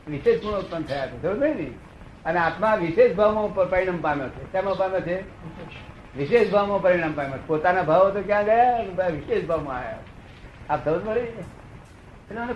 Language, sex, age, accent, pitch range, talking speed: Gujarati, male, 60-79, native, 155-225 Hz, 125 wpm